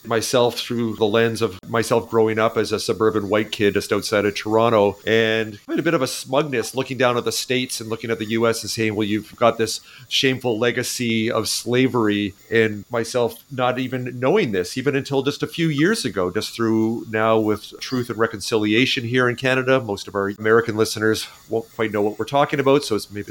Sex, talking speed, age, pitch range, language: male, 210 wpm, 40-59, 110-130 Hz, English